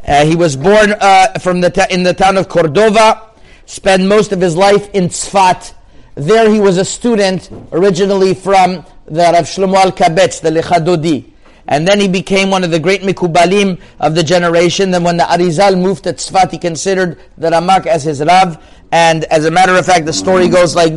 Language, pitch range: English, 155-185 Hz